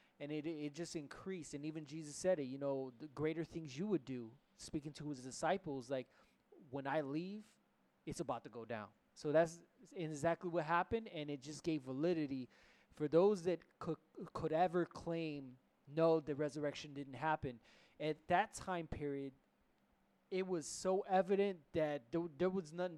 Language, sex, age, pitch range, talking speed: English, male, 20-39, 145-175 Hz, 175 wpm